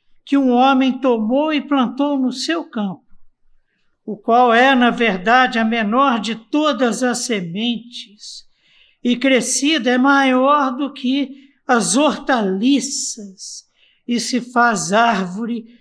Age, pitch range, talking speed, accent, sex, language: 60-79, 220-275 Hz, 120 wpm, Brazilian, male, Portuguese